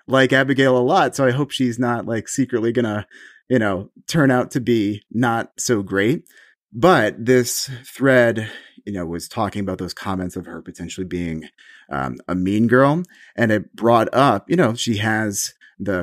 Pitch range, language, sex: 90-125 Hz, English, male